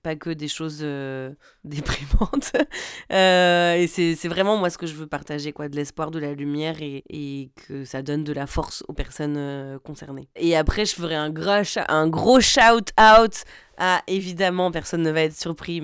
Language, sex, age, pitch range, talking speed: French, female, 20-39, 145-175 Hz, 195 wpm